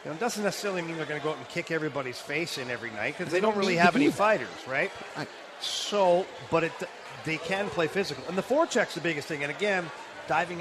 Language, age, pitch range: English, 40-59, 145-175 Hz